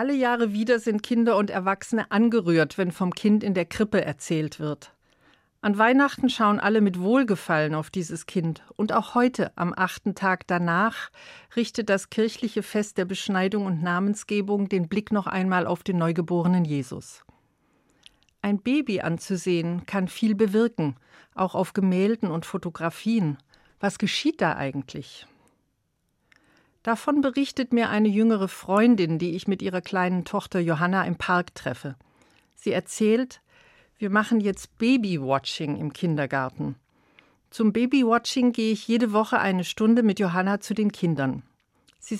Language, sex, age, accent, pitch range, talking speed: German, female, 50-69, German, 175-220 Hz, 145 wpm